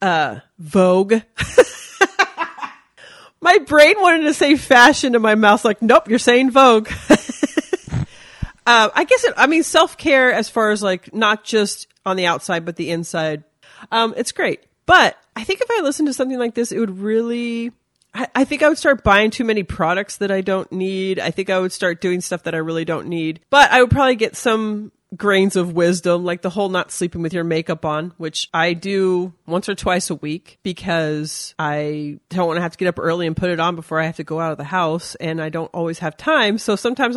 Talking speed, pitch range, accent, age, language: 220 wpm, 170-240 Hz, American, 30-49, English